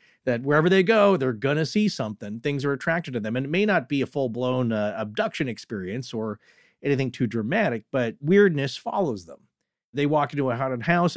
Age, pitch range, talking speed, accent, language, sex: 40-59, 120-160 Hz, 205 wpm, American, English, male